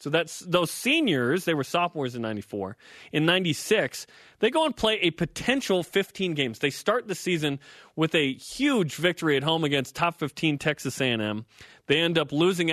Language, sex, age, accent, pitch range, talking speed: English, male, 30-49, American, 155-205 Hz, 180 wpm